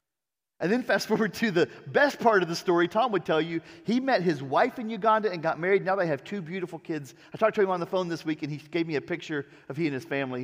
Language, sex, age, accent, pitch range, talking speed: English, male, 40-59, American, 160-230 Hz, 285 wpm